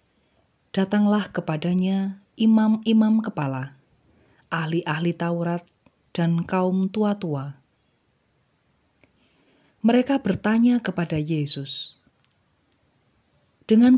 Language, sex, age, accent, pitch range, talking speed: Indonesian, female, 30-49, native, 150-210 Hz, 60 wpm